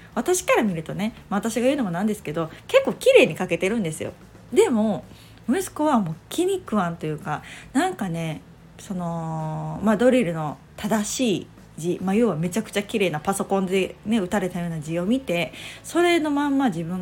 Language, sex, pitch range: Japanese, female, 180-250 Hz